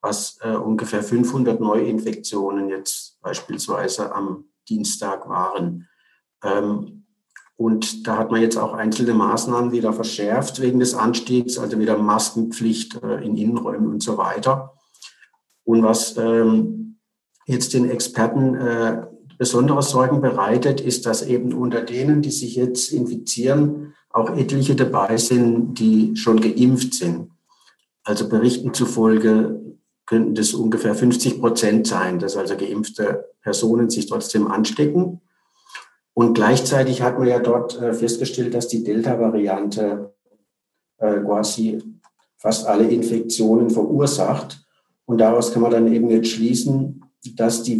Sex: male